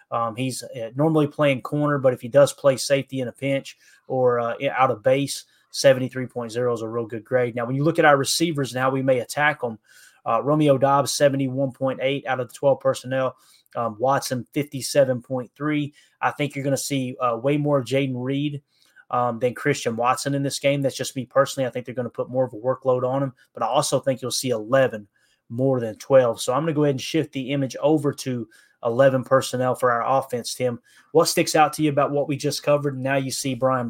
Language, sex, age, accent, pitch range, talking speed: English, male, 20-39, American, 125-140 Hz, 220 wpm